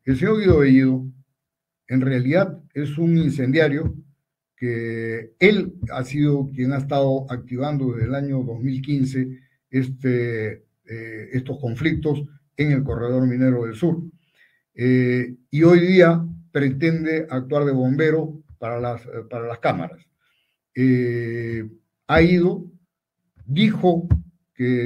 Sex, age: male, 50-69